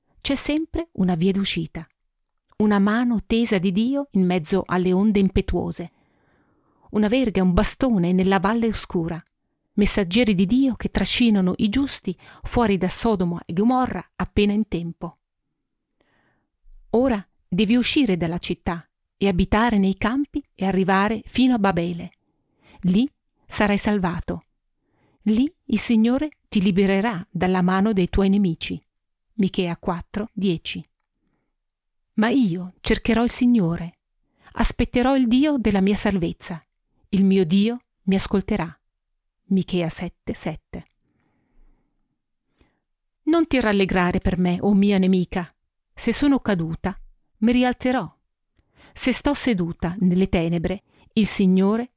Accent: native